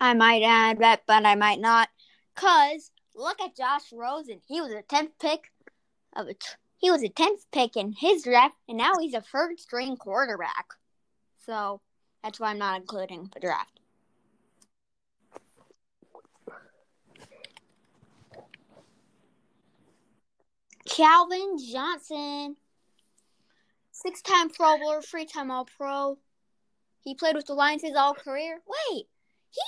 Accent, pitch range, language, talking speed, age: American, 225-330 Hz, English, 130 wpm, 20-39